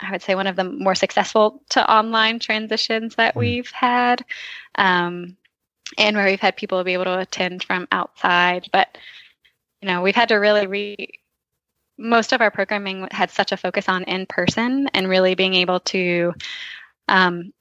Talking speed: 170 wpm